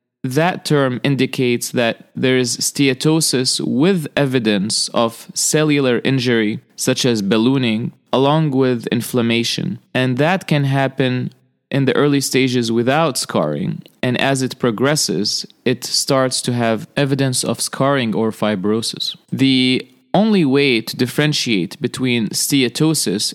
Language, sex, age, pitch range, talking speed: English, male, 30-49, 125-160 Hz, 125 wpm